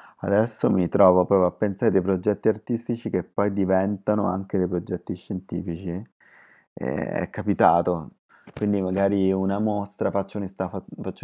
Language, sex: Italian, male